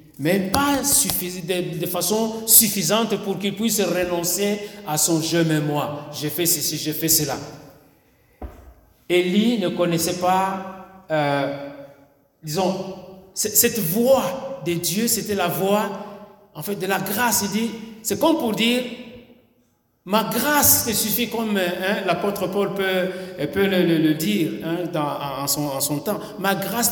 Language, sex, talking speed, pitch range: French, male, 155 wpm, 150-200 Hz